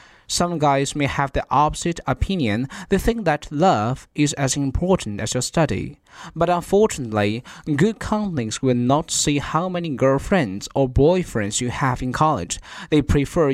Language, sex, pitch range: Chinese, male, 120-165 Hz